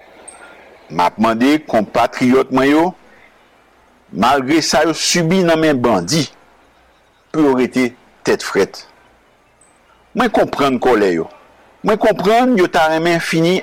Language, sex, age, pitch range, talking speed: English, male, 60-79, 125-185 Hz, 110 wpm